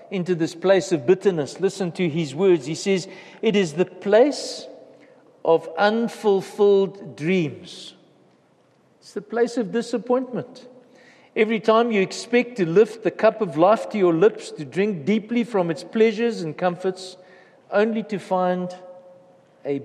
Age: 60-79